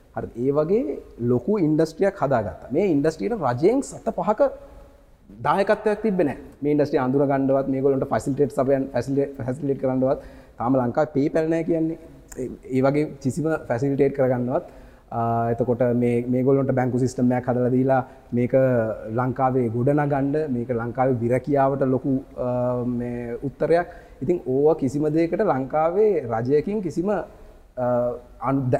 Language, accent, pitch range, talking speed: English, Indian, 120-150 Hz, 60 wpm